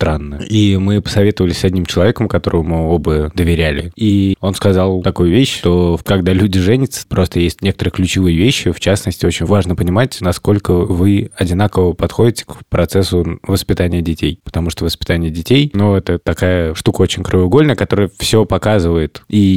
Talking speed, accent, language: 155 wpm, native, Russian